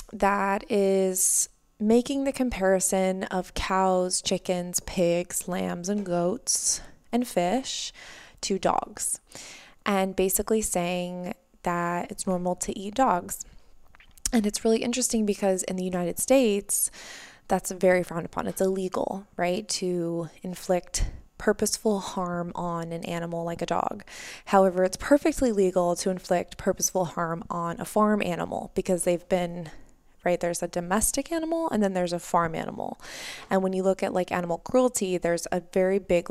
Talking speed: 145 wpm